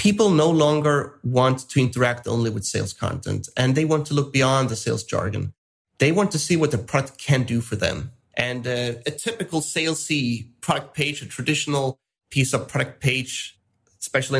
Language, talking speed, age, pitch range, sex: English, 185 wpm, 30-49, 120-155 Hz, male